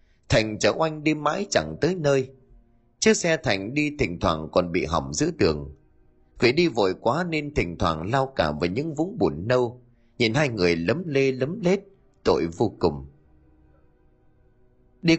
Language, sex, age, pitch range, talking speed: Vietnamese, male, 30-49, 85-140 Hz, 175 wpm